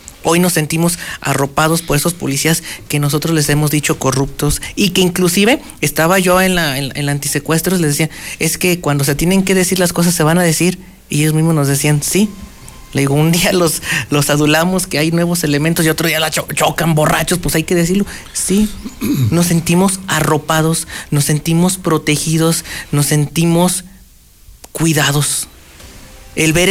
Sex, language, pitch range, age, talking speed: male, Spanish, 145-170 Hz, 40-59, 175 wpm